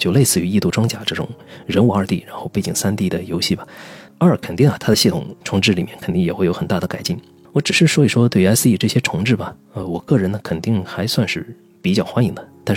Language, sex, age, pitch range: Chinese, male, 20-39, 95-130 Hz